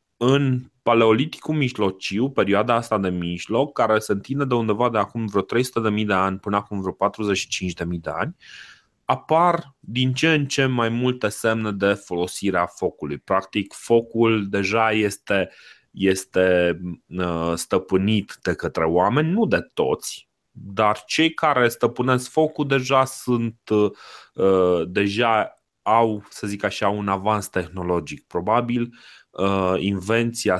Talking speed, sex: 125 wpm, male